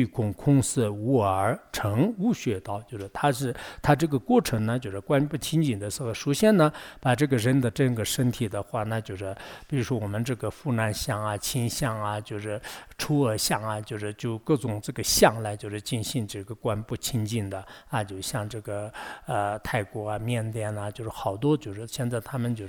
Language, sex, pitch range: English, male, 110-145 Hz